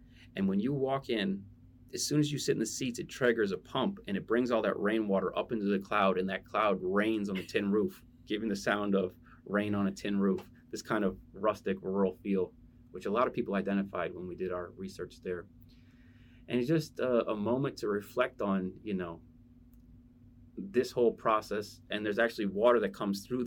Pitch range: 95-120 Hz